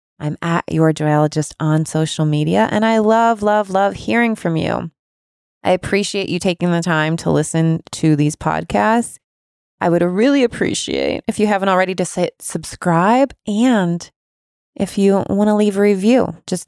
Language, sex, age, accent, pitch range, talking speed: English, female, 20-39, American, 155-210 Hz, 165 wpm